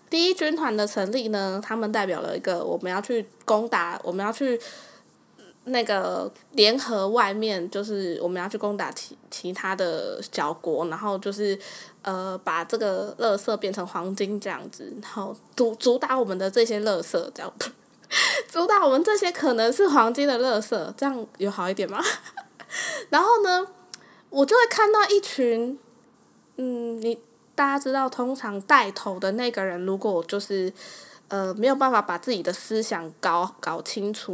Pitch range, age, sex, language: 195-250 Hz, 10-29, female, Chinese